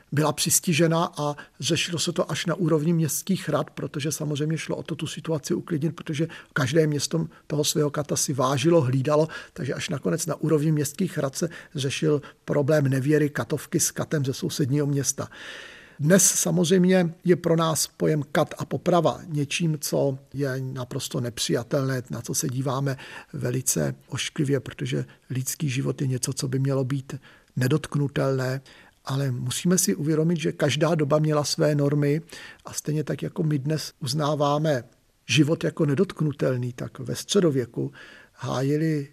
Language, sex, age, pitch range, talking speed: Czech, male, 50-69, 140-165 Hz, 150 wpm